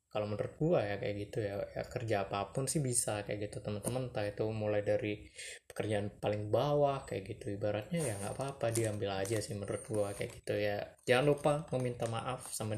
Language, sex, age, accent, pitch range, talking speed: Indonesian, male, 20-39, native, 105-125 Hz, 195 wpm